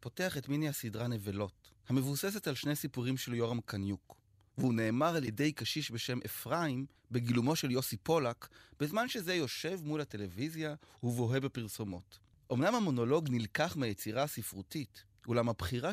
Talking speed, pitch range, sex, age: 140 wpm, 110-150 Hz, male, 30-49